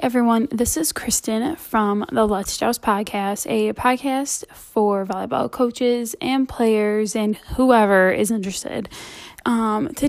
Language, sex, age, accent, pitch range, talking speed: English, female, 10-29, American, 205-245 Hz, 130 wpm